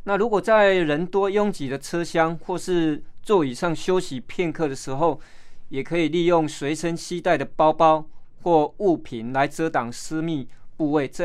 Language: Chinese